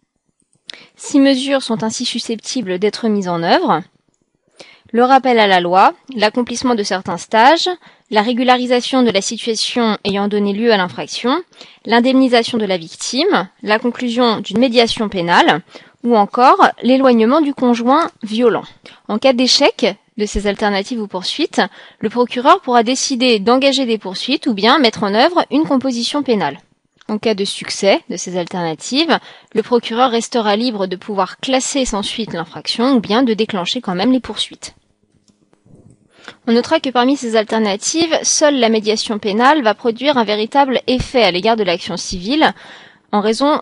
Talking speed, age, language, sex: 155 wpm, 20-39, French, female